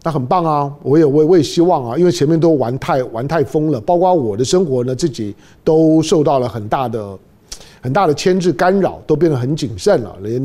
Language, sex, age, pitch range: Chinese, male, 50-69, 135-185 Hz